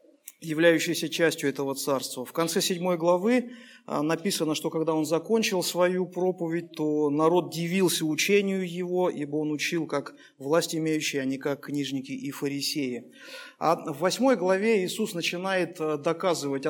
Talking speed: 140 wpm